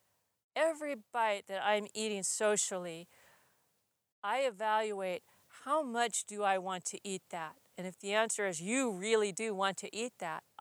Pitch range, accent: 195-235 Hz, American